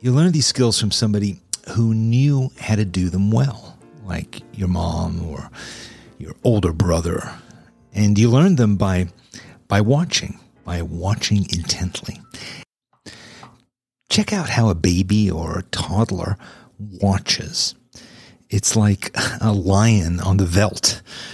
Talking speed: 130 wpm